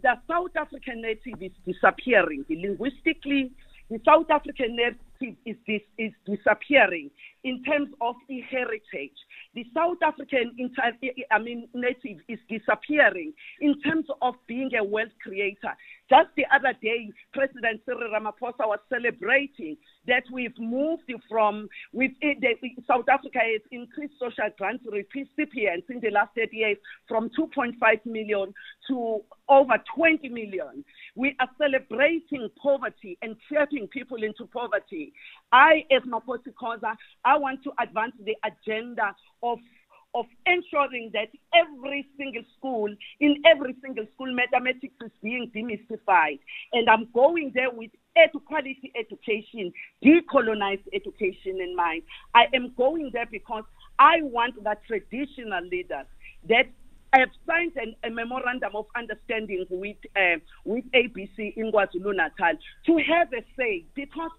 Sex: female